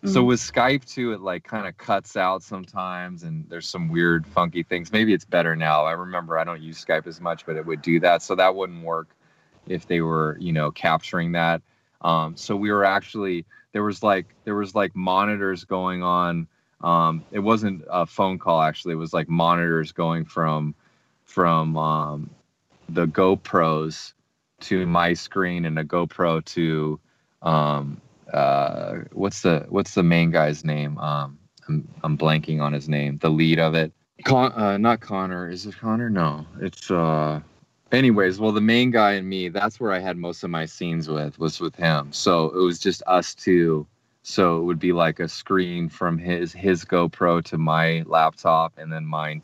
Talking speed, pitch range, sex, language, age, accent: 190 wpm, 80-95 Hz, male, English, 20-39, American